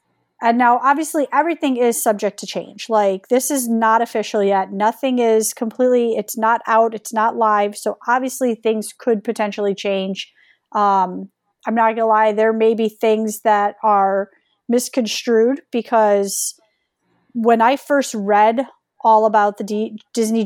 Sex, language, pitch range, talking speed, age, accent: female, English, 210-245 Hz, 150 wpm, 30-49, American